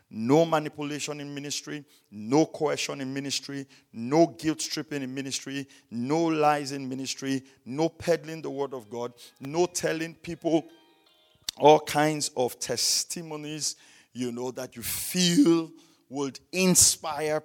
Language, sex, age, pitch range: English, male, 50-69, 115-150 Hz